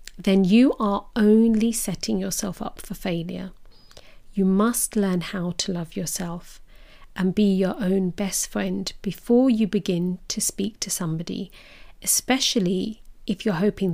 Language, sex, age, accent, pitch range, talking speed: English, female, 40-59, British, 190-220 Hz, 140 wpm